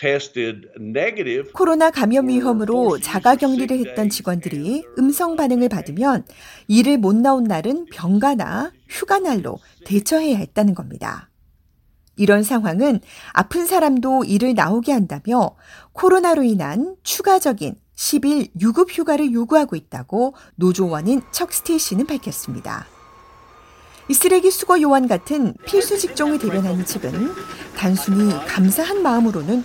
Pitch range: 185-280 Hz